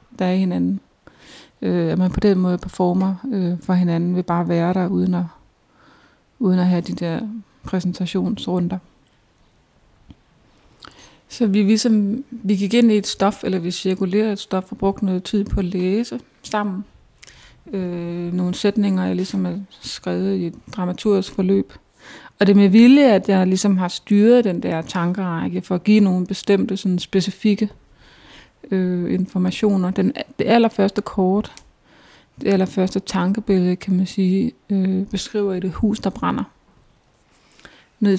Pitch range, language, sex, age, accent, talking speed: 180-210 Hz, English, female, 30-49, Danish, 150 wpm